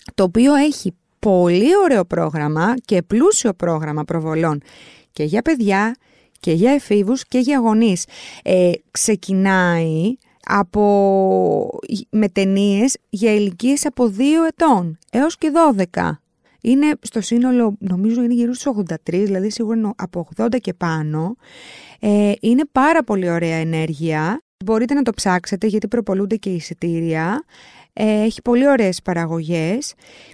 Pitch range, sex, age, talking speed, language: 185-250 Hz, female, 20-39, 125 wpm, Greek